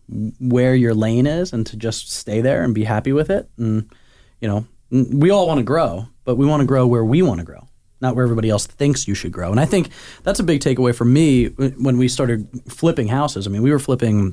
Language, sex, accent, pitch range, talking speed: English, male, American, 110-145 Hz, 245 wpm